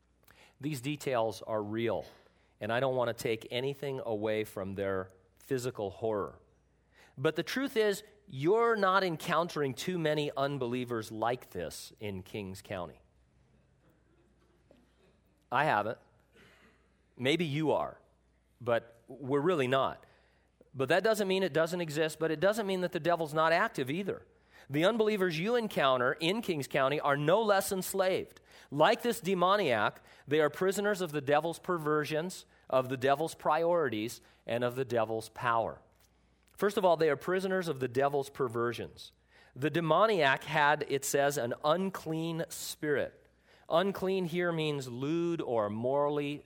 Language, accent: English, American